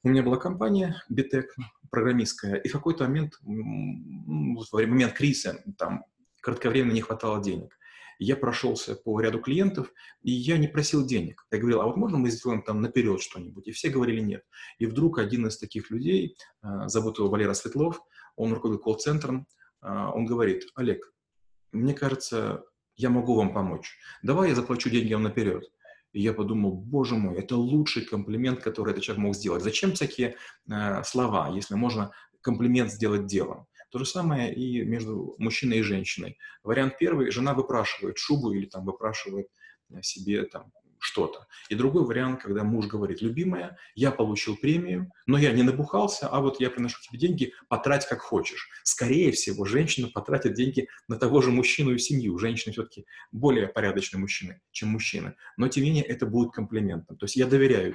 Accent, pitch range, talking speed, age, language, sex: native, 110-135 Hz, 170 wpm, 30-49, Russian, male